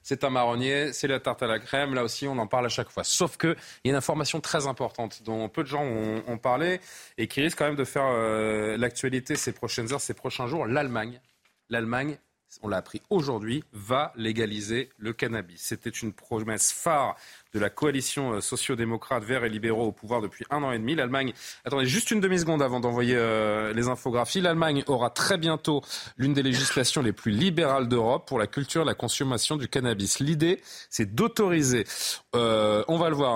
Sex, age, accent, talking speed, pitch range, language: male, 30-49, French, 200 wpm, 115-150 Hz, French